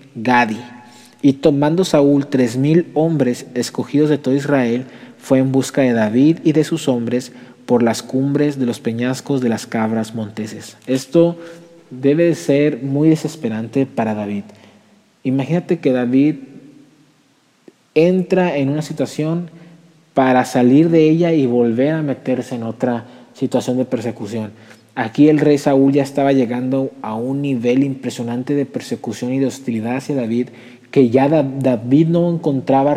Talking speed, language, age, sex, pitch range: 145 wpm, Spanish, 40-59, male, 125-150 Hz